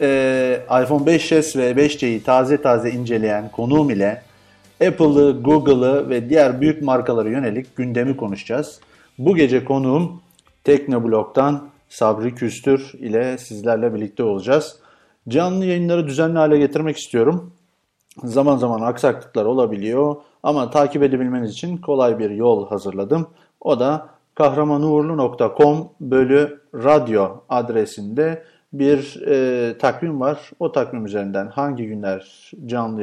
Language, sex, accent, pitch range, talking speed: Turkish, male, native, 120-150 Hz, 115 wpm